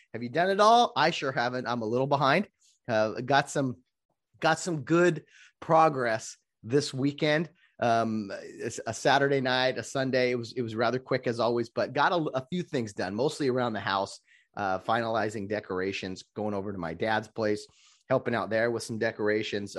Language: English